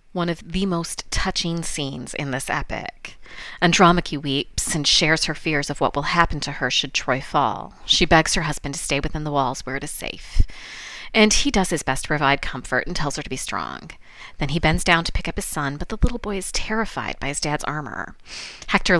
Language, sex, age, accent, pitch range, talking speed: English, female, 30-49, American, 140-175 Hz, 225 wpm